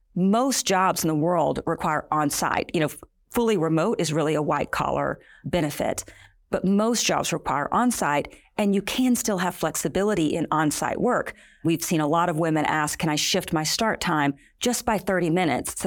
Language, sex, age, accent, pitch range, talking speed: English, female, 40-59, American, 150-185 Hz, 180 wpm